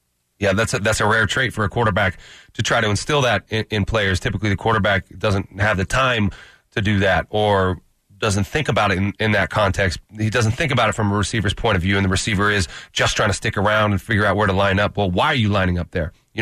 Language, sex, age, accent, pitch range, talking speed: English, male, 30-49, American, 100-115 Hz, 260 wpm